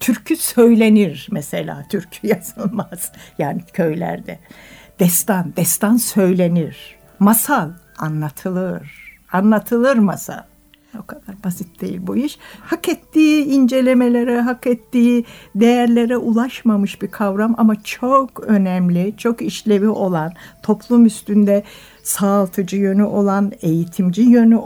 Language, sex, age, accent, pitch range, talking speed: Turkish, female, 60-79, native, 180-235 Hz, 100 wpm